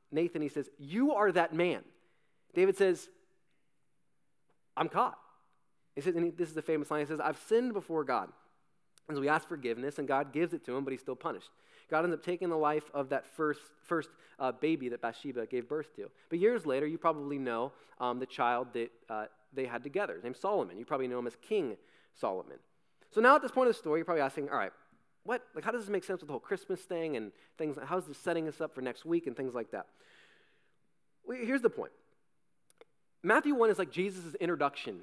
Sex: male